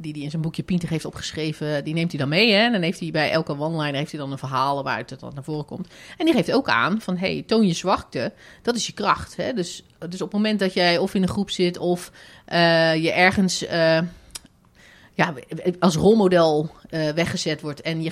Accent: Dutch